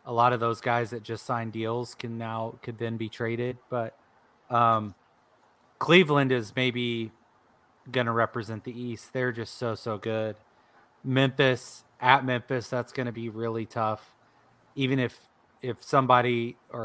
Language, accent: English, American